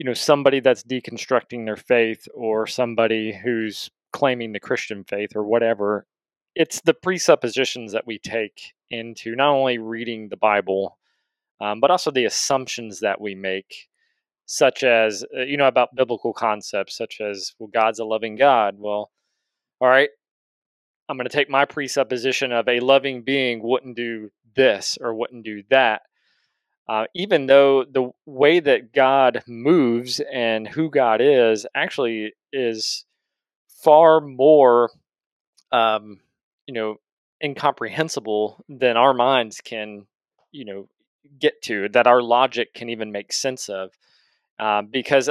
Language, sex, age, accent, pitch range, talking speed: English, male, 30-49, American, 110-135 Hz, 145 wpm